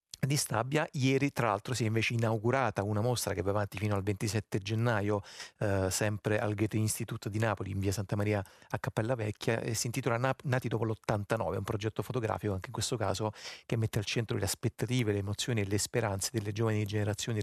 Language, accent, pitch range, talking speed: Italian, native, 105-120 Hz, 205 wpm